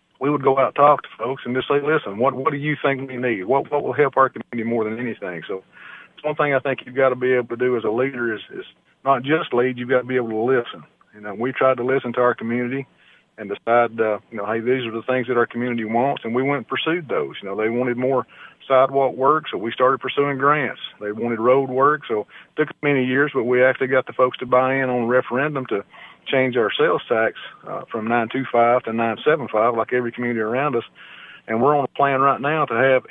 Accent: American